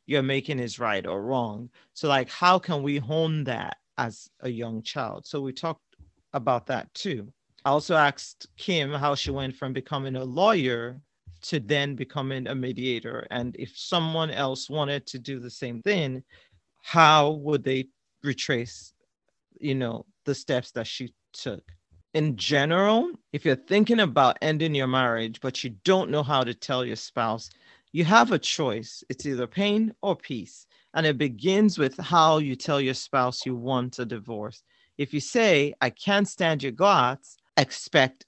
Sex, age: male, 40-59